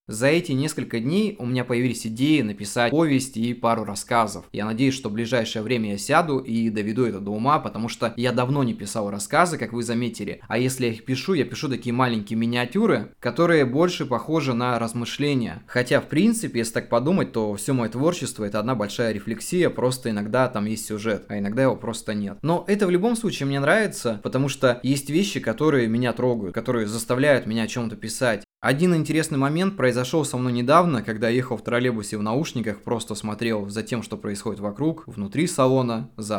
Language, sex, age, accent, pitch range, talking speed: Russian, male, 20-39, native, 110-135 Hz, 200 wpm